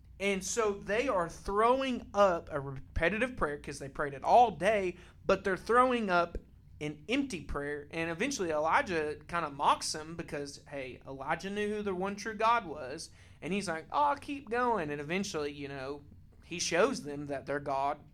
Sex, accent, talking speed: male, American, 180 wpm